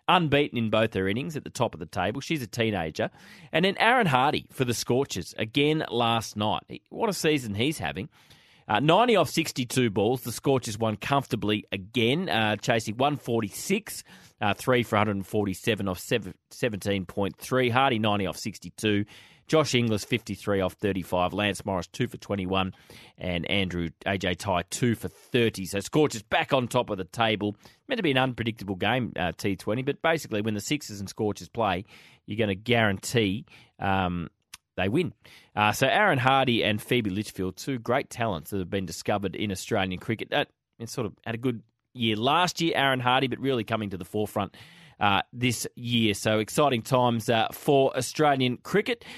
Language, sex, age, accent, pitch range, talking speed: English, male, 30-49, Australian, 100-130 Hz, 180 wpm